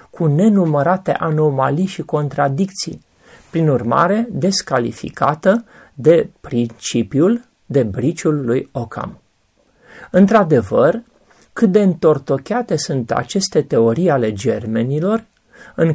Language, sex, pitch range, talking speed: Romanian, male, 130-190 Hz, 90 wpm